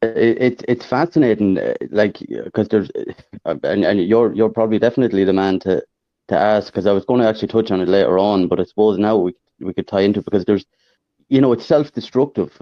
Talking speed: 210 wpm